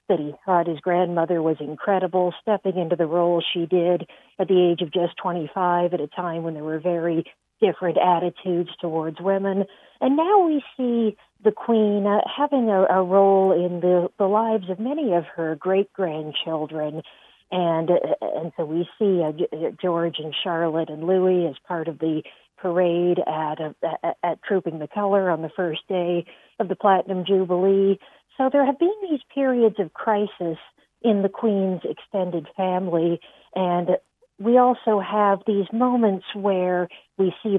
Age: 50-69